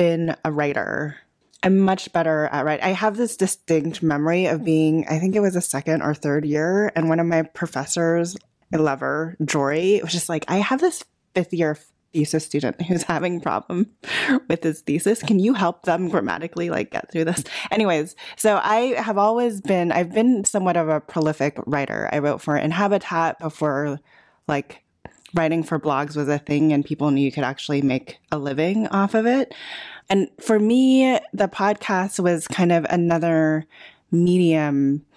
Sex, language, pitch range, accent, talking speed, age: female, English, 150-185 Hz, American, 180 wpm, 20-39